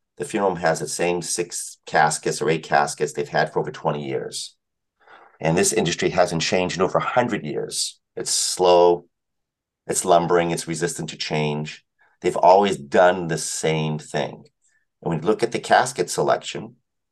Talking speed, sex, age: 170 wpm, male, 50-69